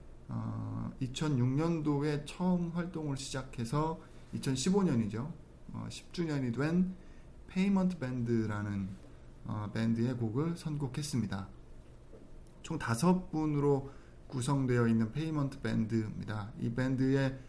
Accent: native